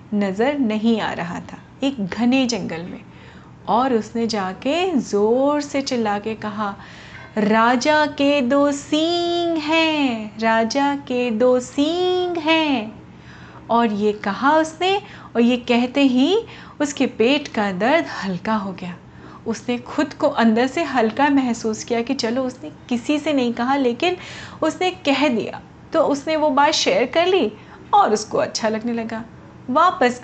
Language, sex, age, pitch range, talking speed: Hindi, female, 30-49, 220-295 Hz, 145 wpm